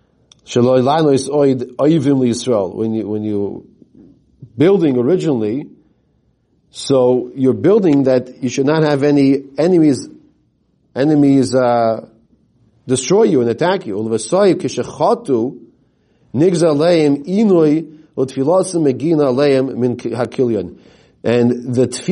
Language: English